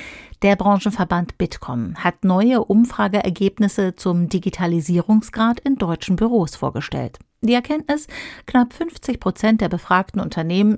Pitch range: 180-230 Hz